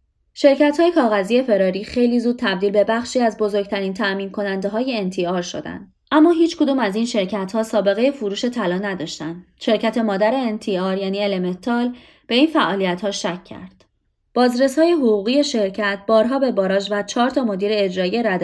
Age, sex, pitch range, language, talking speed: 20-39, female, 185-240 Hz, Persian, 155 wpm